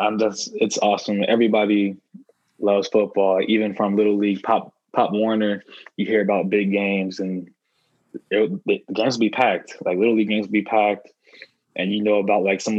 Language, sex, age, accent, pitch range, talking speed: English, male, 20-39, American, 100-110 Hz, 155 wpm